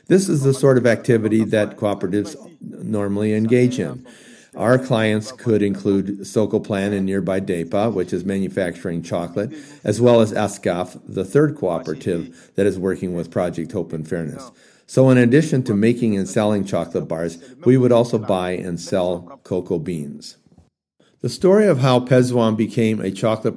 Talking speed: 165 wpm